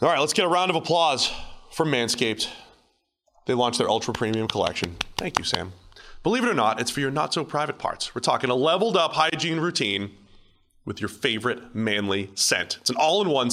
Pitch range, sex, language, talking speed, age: 110-150 Hz, male, English, 180 wpm, 30-49